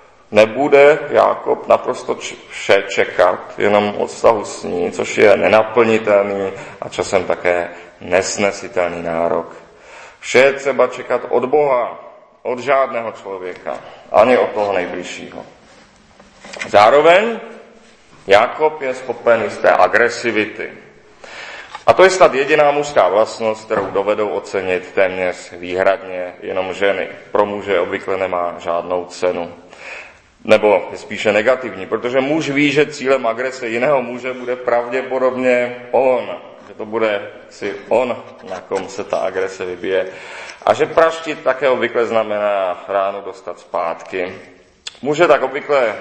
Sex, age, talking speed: male, 40-59, 125 wpm